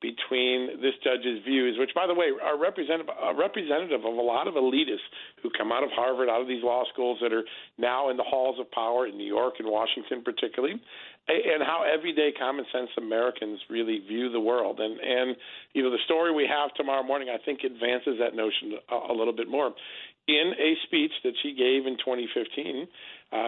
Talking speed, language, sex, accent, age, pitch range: 200 wpm, English, male, American, 50-69, 125-150 Hz